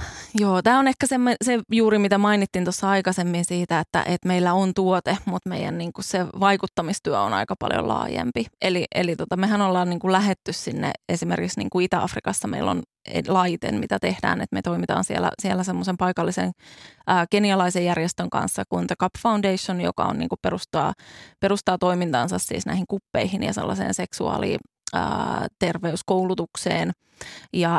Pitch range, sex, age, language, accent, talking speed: 170-195 Hz, female, 20-39, Finnish, native, 150 wpm